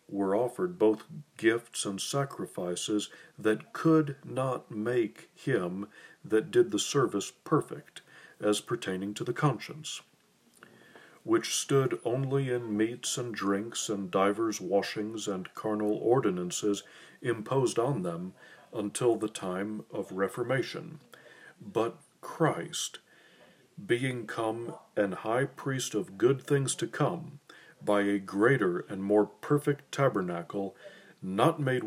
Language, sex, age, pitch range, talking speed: English, male, 50-69, 105-140 Hz, 120 wpm